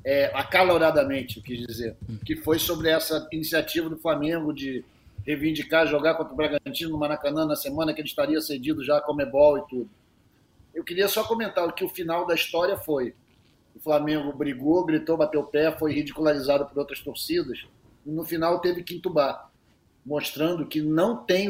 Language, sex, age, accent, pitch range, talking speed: Portuguese, male, 40-59, Brazilian, 145-180 Hz, 175 wpm